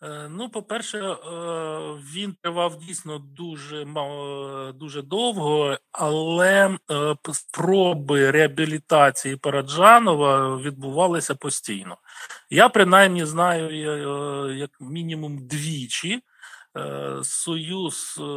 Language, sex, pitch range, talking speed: Ukrainian, male, 145-200 Hz, 70 wpm